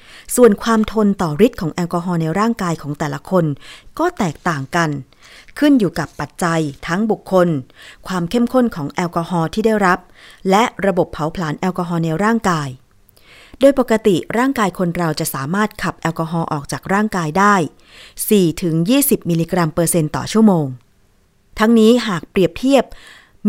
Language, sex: Thai, female